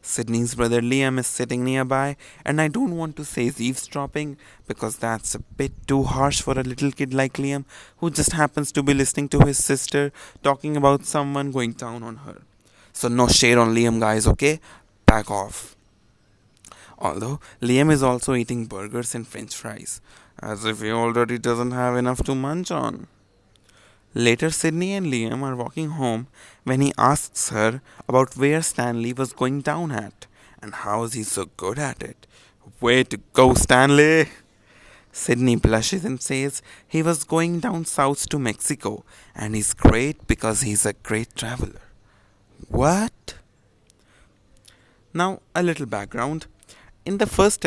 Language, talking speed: English, 160 wpm